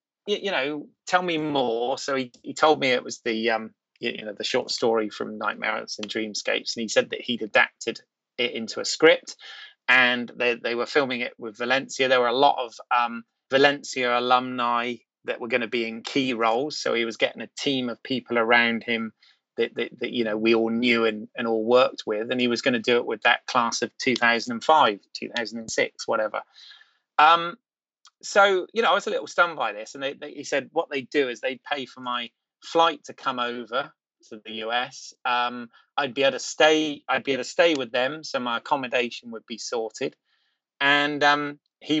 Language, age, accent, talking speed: English, 30-49, British, 210 wpm